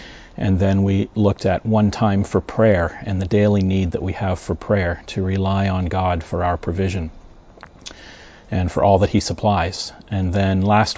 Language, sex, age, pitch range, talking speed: English, male, 40-59, 95-105 Hz, 185 wpm